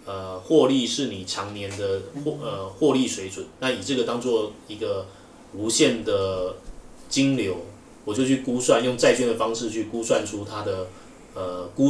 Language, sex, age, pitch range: Chinese, male, 20-39, 95-115 Hz